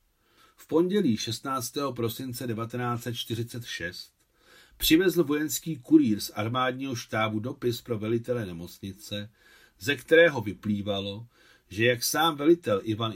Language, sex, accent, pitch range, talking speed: Czech, male, native, 105-130 Hz, 105 wpm